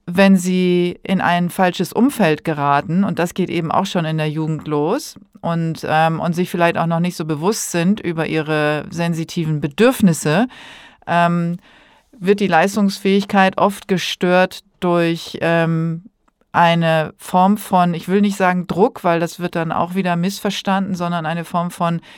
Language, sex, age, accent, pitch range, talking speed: German, female, 40-59, German, 165-190 Hz, 155 wpm